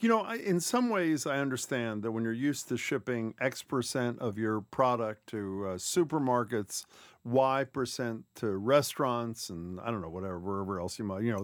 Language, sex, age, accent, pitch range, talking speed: English, male, 50-69, American, 110-140 Hz, 190 wpm